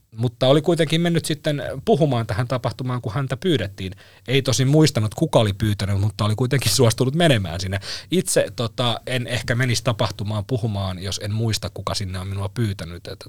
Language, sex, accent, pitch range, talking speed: Finnish, male, native, 105-135 Hz, 175 wpm